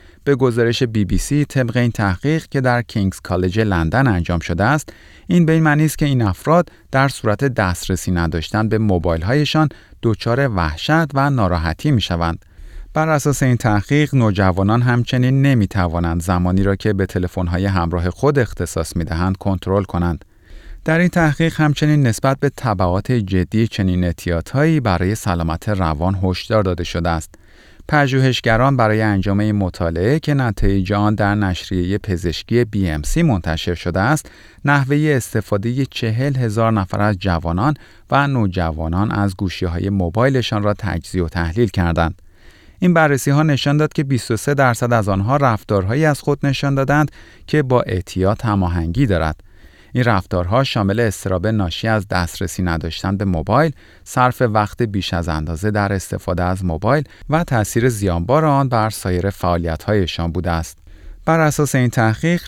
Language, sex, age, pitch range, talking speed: Persian, male, 30-49, 90-130 Hz, 145 wpm